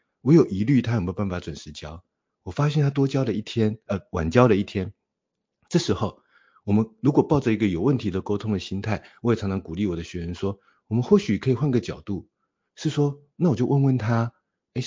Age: 50-69